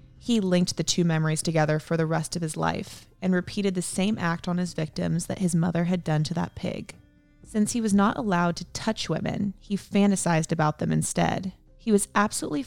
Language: English